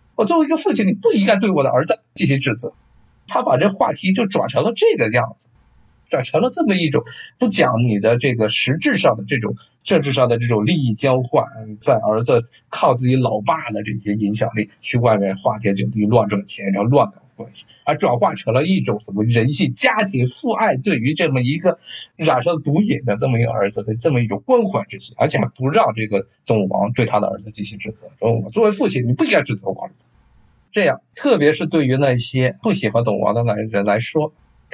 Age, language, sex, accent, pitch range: 50-69, Chinese, male, native, 110-170 Hz